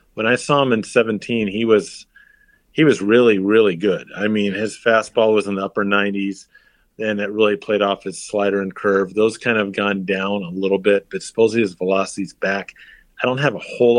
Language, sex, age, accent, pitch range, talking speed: English, male, 40-59, American, 100-120 Hz, 210 wpm